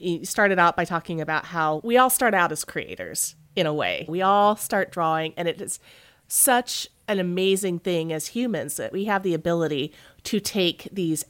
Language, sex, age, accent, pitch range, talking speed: English, female, 30-49, American, 170-215 Hz, 195 wpm